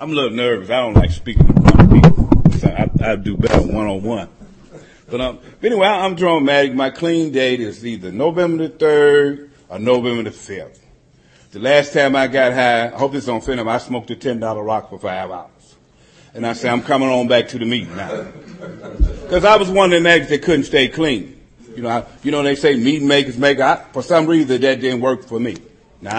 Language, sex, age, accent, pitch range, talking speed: English, male, 50-69, American, 120-165 Hz, 220 wpm